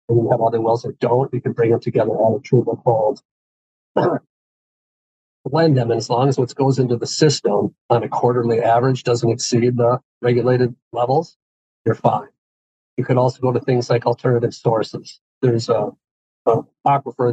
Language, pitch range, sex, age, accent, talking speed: English, 115-130 Hz, male, 40-59, American, 175 wpm